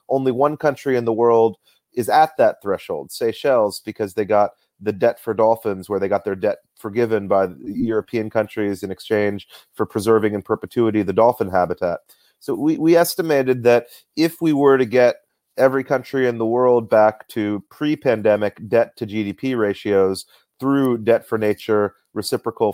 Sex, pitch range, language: male, 105-135 Hz, English